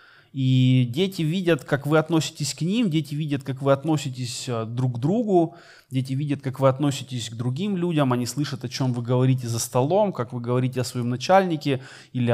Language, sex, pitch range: Russian, male, 125-160 Hz